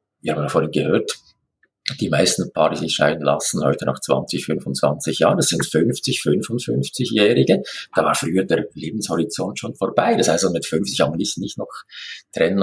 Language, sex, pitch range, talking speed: German, male, 85-105 Hz, 175 wpm